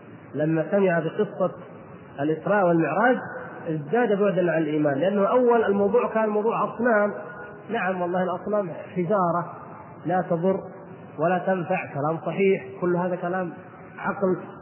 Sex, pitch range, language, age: male, 160-200 Hz, Arabic, 30-49